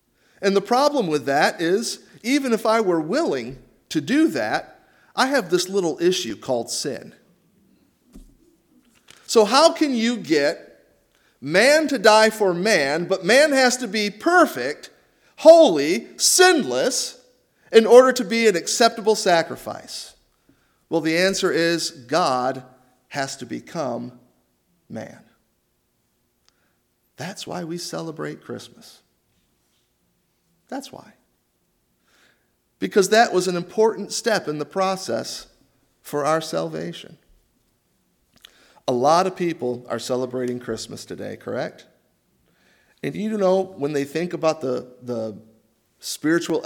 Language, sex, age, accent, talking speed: English, male, 50-69, American, 120 wpm